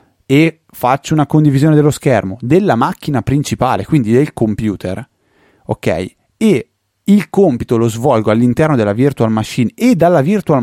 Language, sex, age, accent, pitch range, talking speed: Italian, male, 30-49, native, 100-135 Hz, 140 wpm